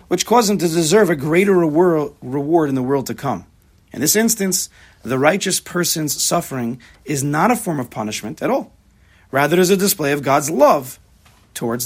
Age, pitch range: 40-59, 130-195 Hz